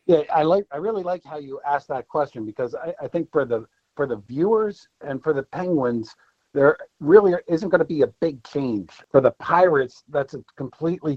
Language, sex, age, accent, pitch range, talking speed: English, male, 50-69, American, 115-150 Hz, 210 wpm